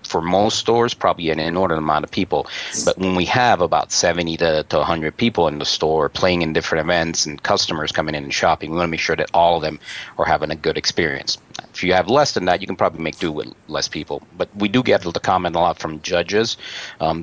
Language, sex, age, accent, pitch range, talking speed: English, male, 40-59, American, 85-105 Hz, 245 wpm